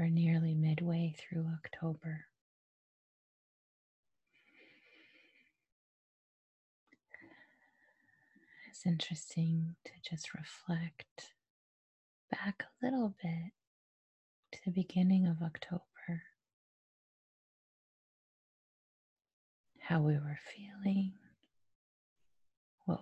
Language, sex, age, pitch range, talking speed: English, female, 30-49, 160-190 Hz, 65 wpm